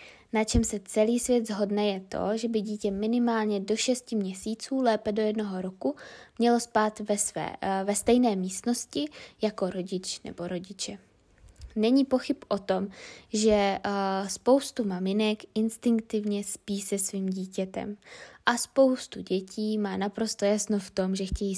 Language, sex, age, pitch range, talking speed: Czech, female, 20-39, 190-220 Hz, 140 wpm